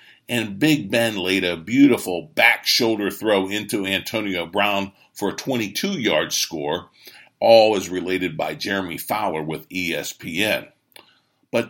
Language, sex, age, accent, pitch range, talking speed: English, male, 50-69, American, 90-135 Hz, 125 wpm